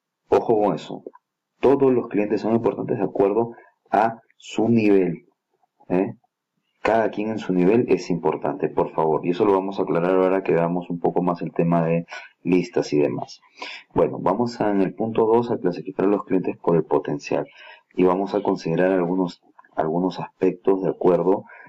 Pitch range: 85-100 Hz